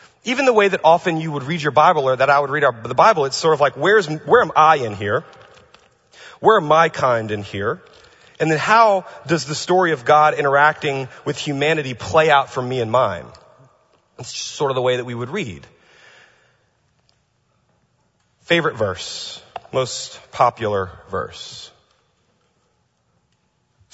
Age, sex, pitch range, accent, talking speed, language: 30-49, male, 115-155 Hz, American, 165 wpm, English